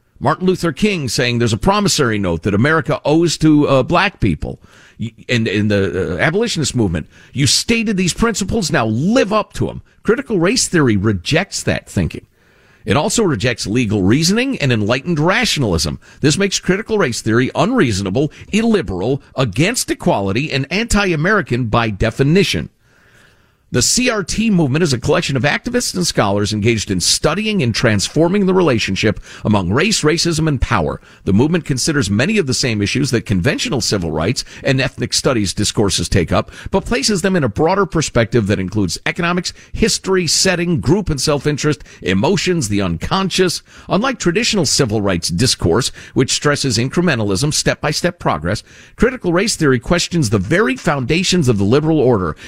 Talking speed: 155 wpm